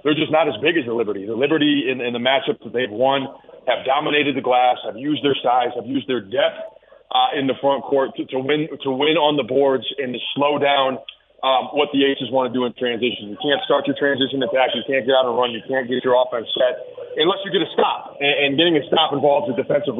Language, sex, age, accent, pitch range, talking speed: English, male, 30-49, American, 130-150 Hz, 260 wpm